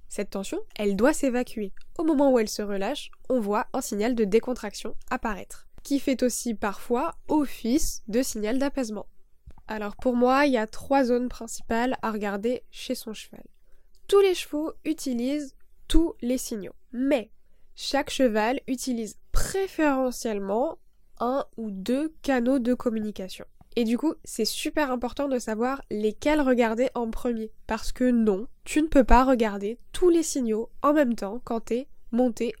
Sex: female